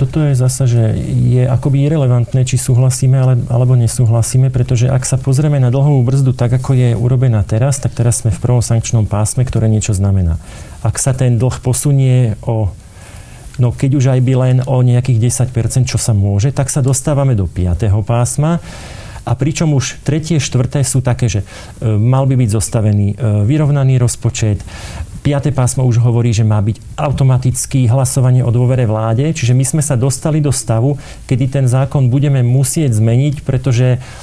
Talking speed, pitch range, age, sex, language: 170 wpm, 115-135 Hz, 40-59, male, Slovak